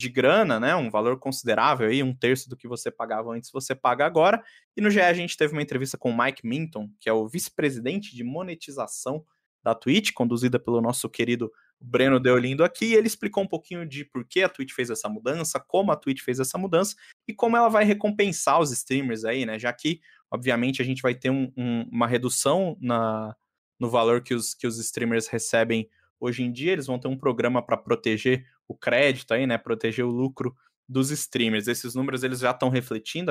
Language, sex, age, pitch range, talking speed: Portuguese, male, 20-39, 120-140 Hz, 210 wpm